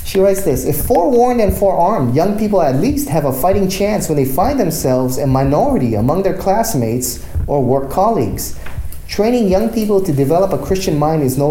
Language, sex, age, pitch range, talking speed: English, male, 30-49, 110-150 Hz, 195 wpm